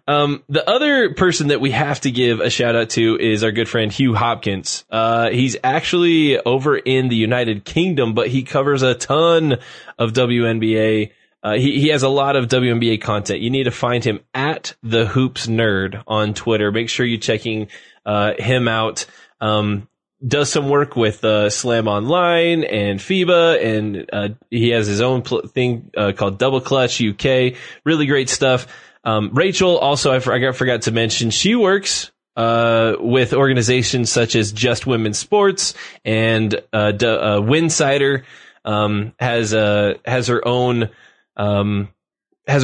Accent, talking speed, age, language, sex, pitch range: American, 160 wpm, 20-39, English, male, 110-130 Hz